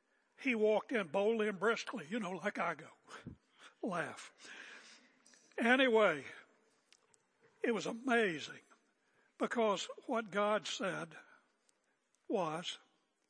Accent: American